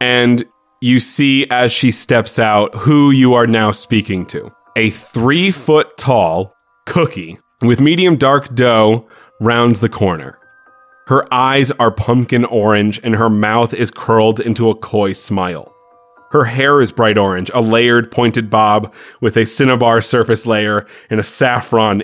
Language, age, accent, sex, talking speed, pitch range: English, 30-49, American, male, 145 wpm, 105-125 Hz